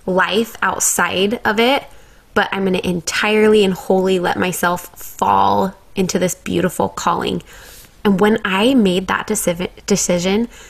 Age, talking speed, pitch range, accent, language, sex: 20-39, 140 wpm, 185-210 Hz, American, English, female